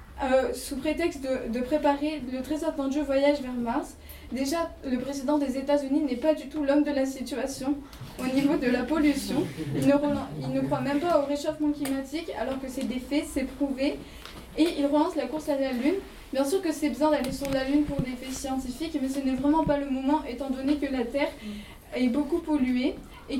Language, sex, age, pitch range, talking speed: French, female, 20-39, 260-295 Hz, 220 wpm